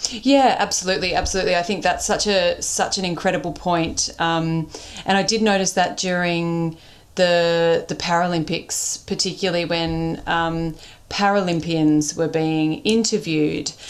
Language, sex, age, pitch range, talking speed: English, female, 30-49, 160-180 Hz, 125 wpm